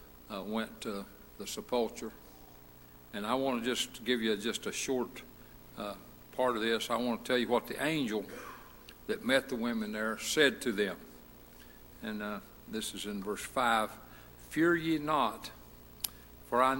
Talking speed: 170 wpm